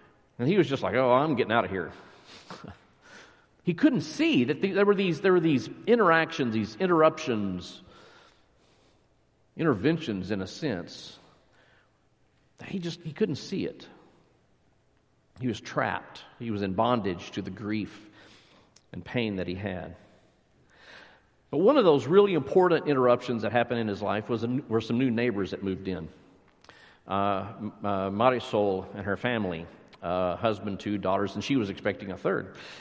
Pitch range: 105-150 Hz